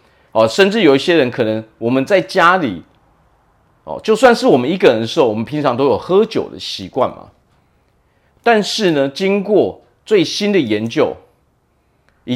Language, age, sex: Chinese, 40-59, male